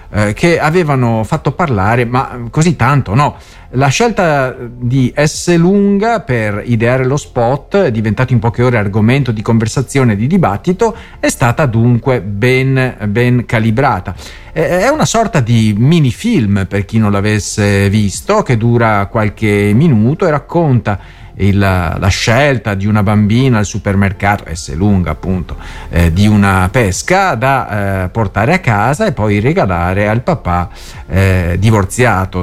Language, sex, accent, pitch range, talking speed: Italian, male, native, 100-140 Hz, 140 wpm